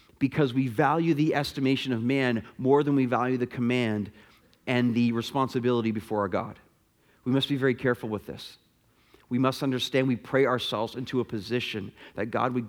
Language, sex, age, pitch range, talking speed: English, male, 40-59, 115-145 Hz, 180 wpm